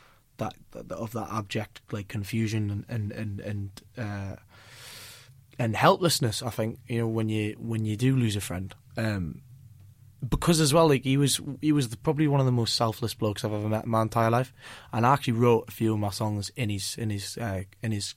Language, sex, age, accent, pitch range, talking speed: English, male, 20-39, British, 110-120 Hz, 215 wpm